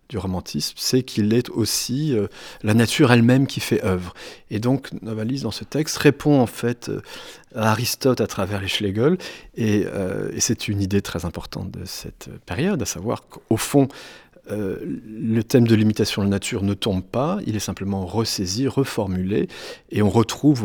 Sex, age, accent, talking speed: male, 40-59, French, 180 wpm